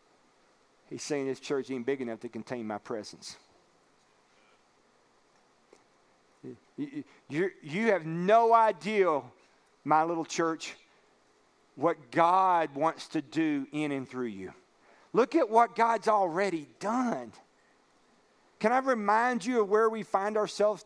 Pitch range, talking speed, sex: 170-220 Hz, 125 wpm, male